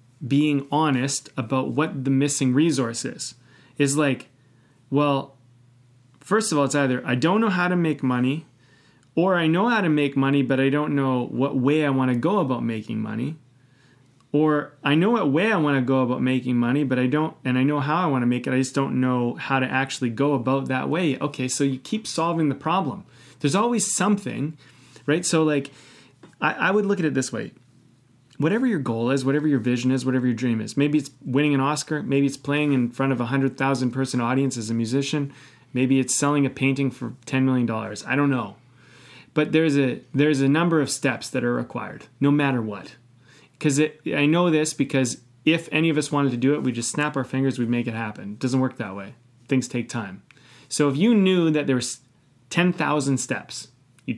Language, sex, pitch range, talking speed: English, male, 125-150 Hz, 215 wpm